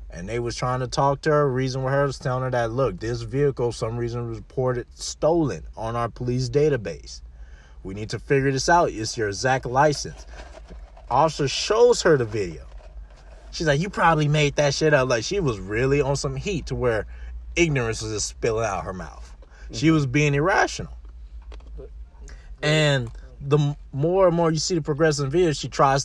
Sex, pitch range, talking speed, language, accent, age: male, 110-155 Hz, 185 wpm, English, American, 30-49